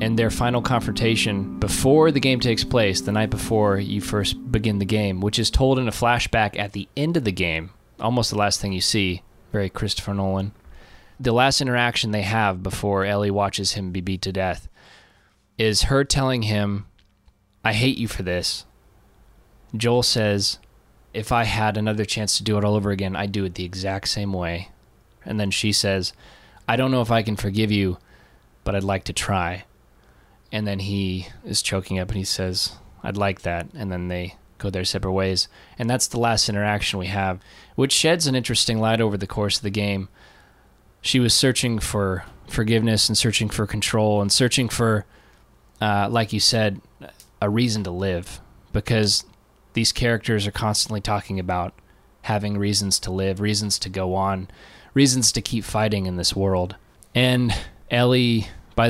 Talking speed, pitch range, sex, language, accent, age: 180 wpm, 95-115 Hz, male, English, American, 20-39